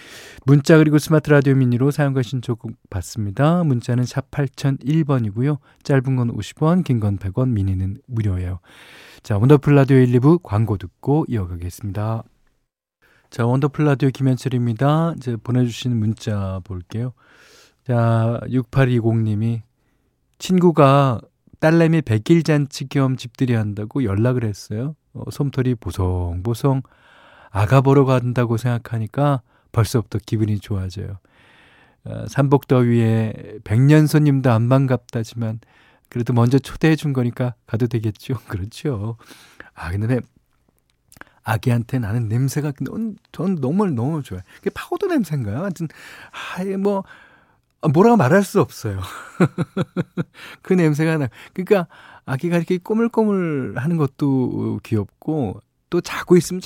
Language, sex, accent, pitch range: Korean, male, native, 110-145 Hz